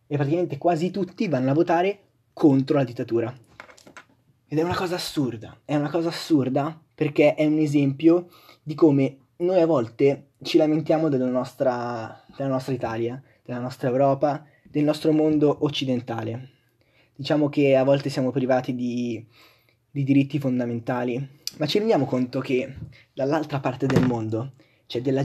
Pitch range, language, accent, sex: 120-150 Hz, Italian, native, male